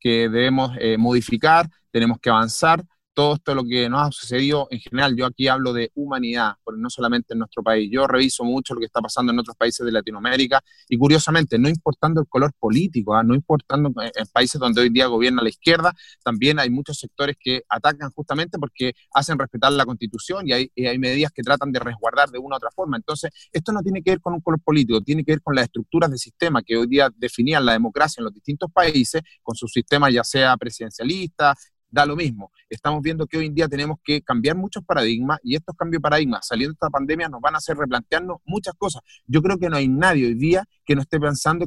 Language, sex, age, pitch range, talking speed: Spanish, male, 30-49, 125-170 Hz, 230 wpm